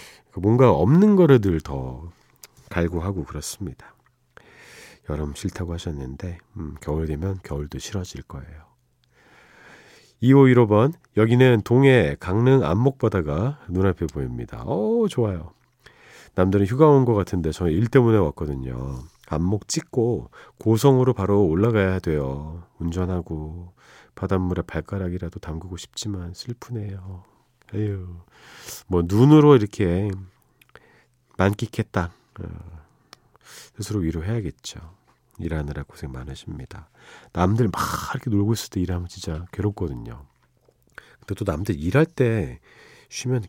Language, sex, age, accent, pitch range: Korean, male, 40-59, native, 85-120 Hz